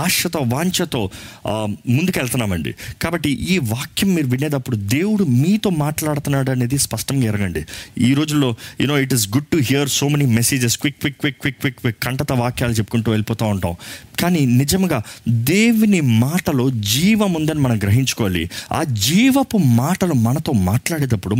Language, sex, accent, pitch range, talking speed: Telugu, male, native, 105-150 Hz, 135 wpm